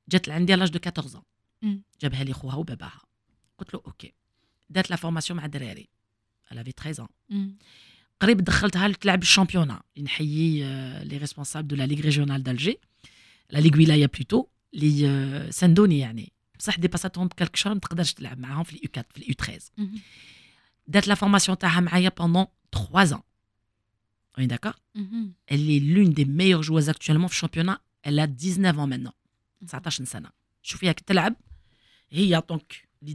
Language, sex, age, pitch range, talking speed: Arabic, female, 40-59, 140-185 Hz, 120 wpm